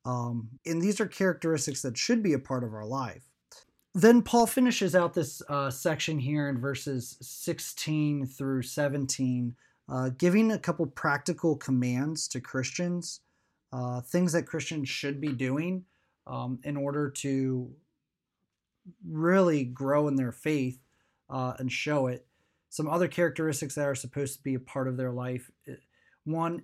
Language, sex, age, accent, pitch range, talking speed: English, male, 30-49, American, 130-155 Hz, 155 wpm